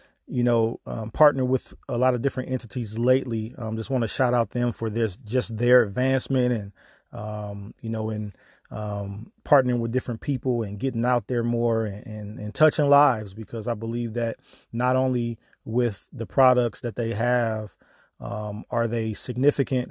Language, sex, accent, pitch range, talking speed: English, male, American, 110-130 Hz, 180 wpm